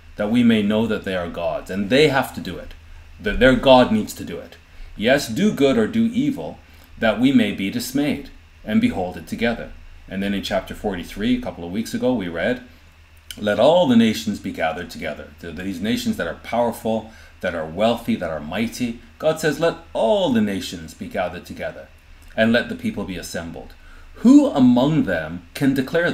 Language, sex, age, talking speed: English, male, 30-49, 195 wpm